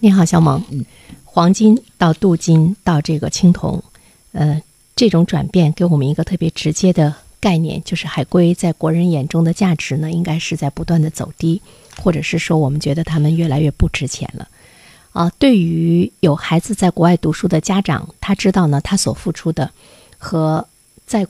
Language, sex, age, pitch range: Chinese, female, 50-69, 150-180 Hz